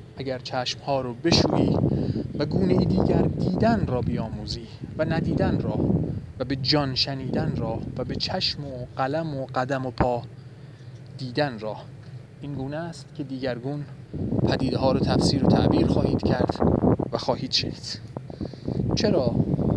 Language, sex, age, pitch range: Persian, male, 30-49, 130-145 Hz